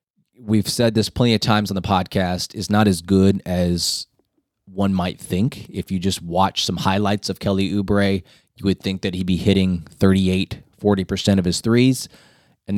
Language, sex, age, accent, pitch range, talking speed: English, male, 20-39, American, 95-110 Hz, 185 wpm